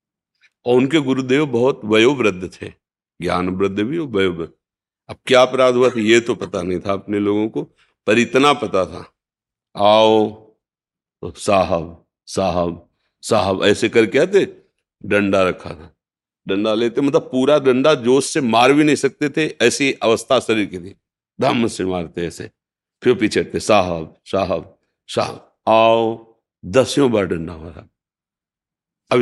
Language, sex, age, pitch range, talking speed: Hindi, male, 60-79, 90-120 Hz, 145 wpm